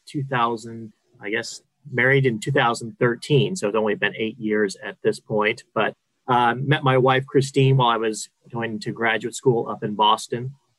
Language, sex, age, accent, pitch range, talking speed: English, male, 30-49, American, 110-135 Hz, 170 wpm